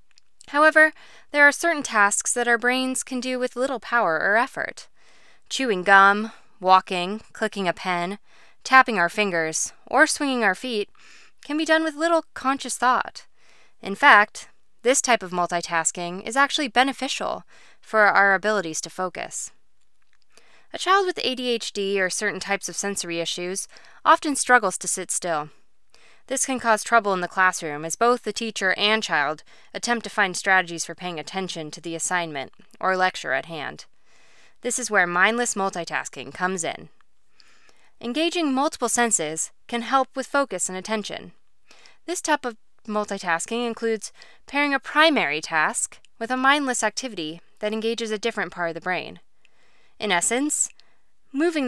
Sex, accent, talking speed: female, American, 150 wpm